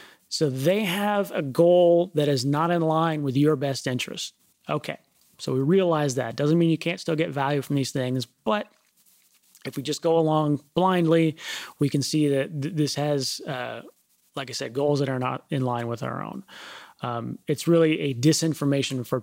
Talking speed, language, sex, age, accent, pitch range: 190 wpm, English, male, 30-49, American, 135-165 Hz